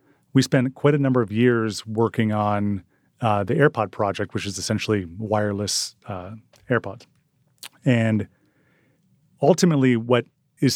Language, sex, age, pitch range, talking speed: English, male, 30-49, 110-135 Hz, 130 wpm